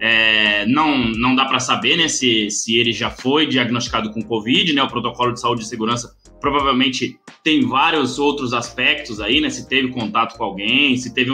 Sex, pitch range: male, 120-180 Hz